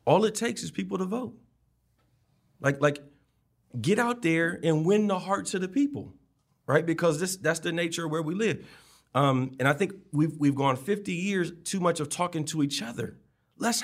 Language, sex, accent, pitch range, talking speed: English, male, American, 125-170 Hz, 200 wpm